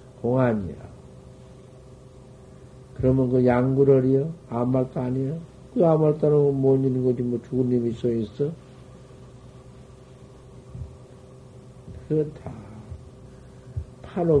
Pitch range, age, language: 120-140 Hz, 60-79, Korean